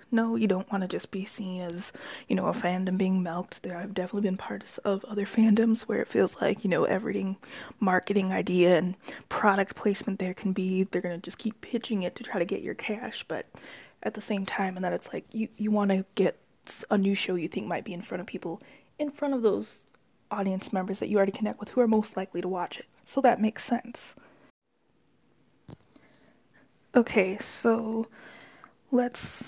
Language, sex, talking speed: English, female, 205 wpm